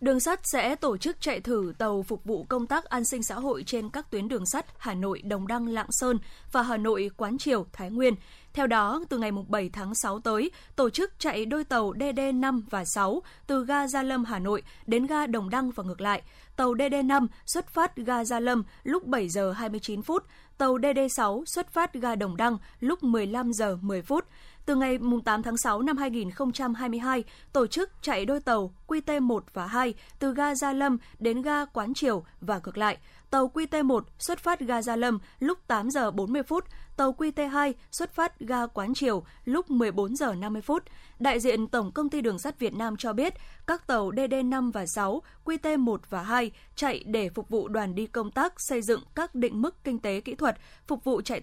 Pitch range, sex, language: 215-275 Hz, female, Vietnamese